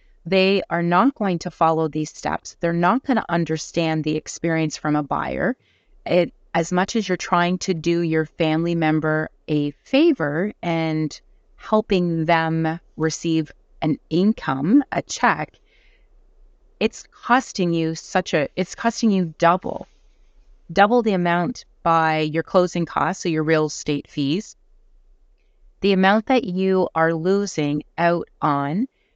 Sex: female